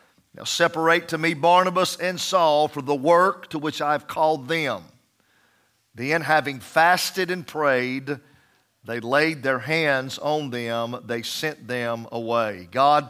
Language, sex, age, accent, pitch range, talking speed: English, male, 50-69, American, 120-165 Hz, 145 wpm